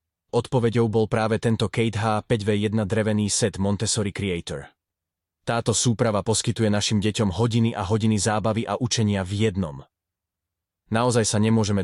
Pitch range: 95-110 Hz